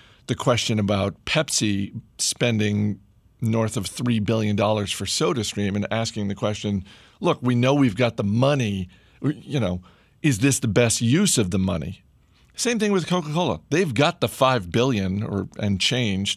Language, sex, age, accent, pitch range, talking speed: English, male, 50-69, American, 100-120 Hz, 160 wpm